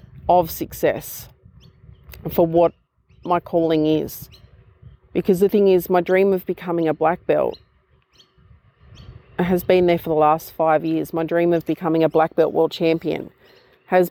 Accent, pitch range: Australian, 160-180 Hz